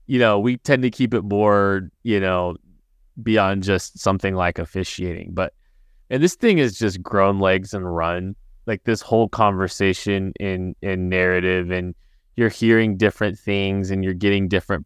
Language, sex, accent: English, male, American